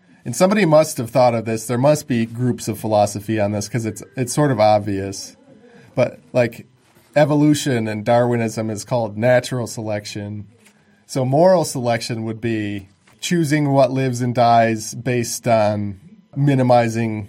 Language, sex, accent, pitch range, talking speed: English, male, American, 115-140 Hz, 150 wpm